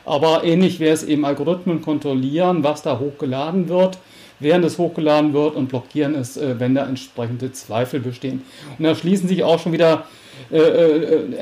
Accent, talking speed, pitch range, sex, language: German, 170 wpm, 140-170 Hz, male, English